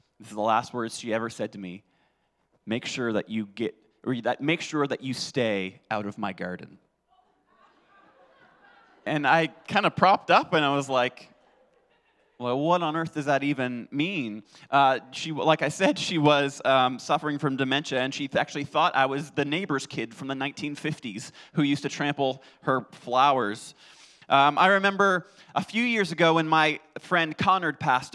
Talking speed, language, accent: 180 wpm, English, American